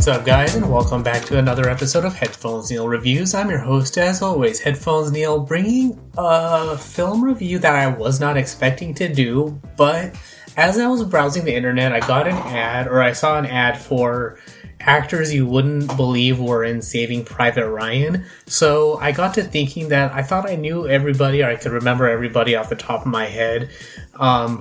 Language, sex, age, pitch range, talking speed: English, male, 30-49, 120-155 Hz, 195 wpm